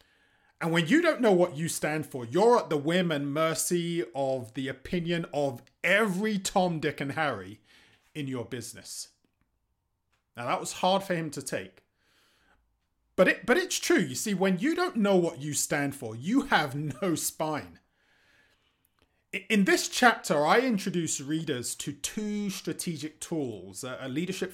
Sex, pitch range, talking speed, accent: male, 125-185 Hz, 160 wpm, British